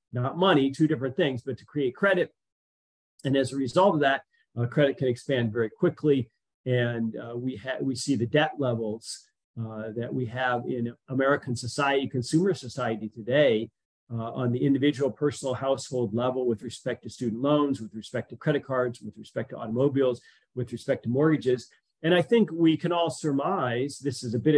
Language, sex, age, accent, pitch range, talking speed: English, male, 40-59, American, 120-150 Hz, 185 wpm